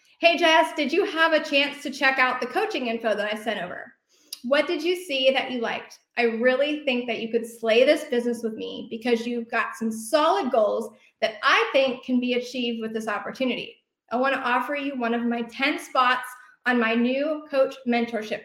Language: English